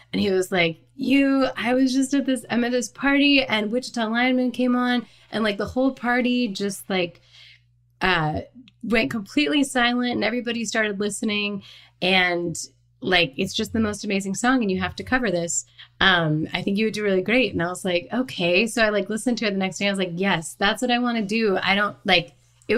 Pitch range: 170-225 Hz